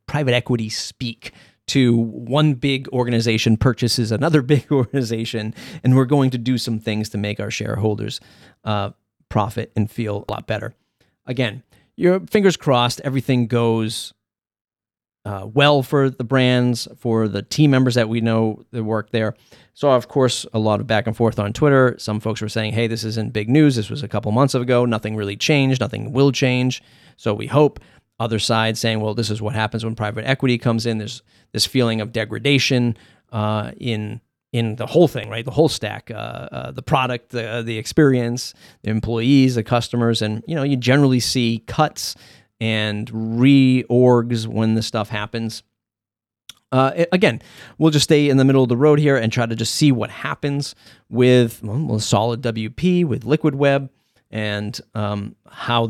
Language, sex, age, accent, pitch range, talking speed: English, male, 30-49, American, 110-130 Hz, 180 wpm